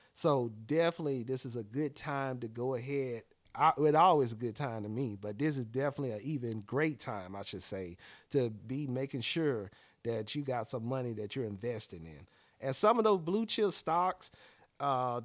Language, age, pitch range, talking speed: English, 40-59, 125-155 Hz, 195 wpm